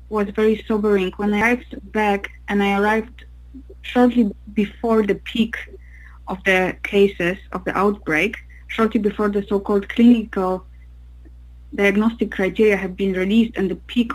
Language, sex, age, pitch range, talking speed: English, female, 20-39, 180-225 Hz, 140 wpm